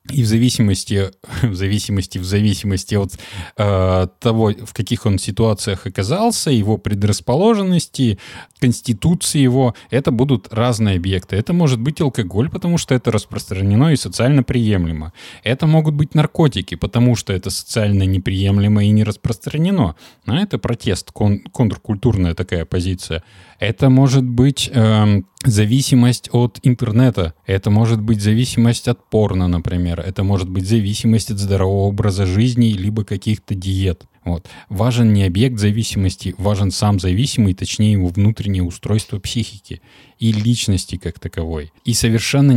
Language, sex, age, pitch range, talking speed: Russian, male, 20-39, 95-120 Hz, 135 wpm